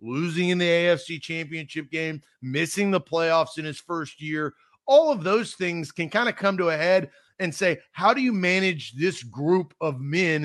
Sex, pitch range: male, 150-185 Hz